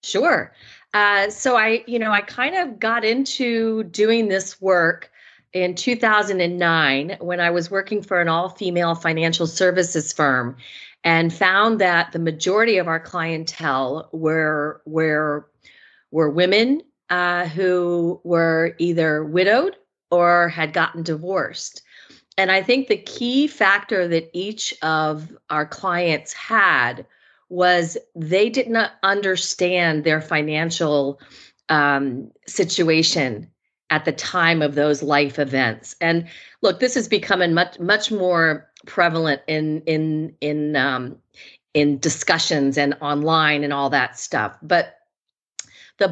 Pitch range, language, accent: 150-190 Hz, English, American